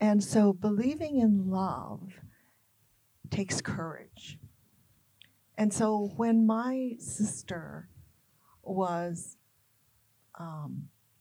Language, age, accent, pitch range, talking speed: English, 50-69, American, 135-185 Hz, 75 wpm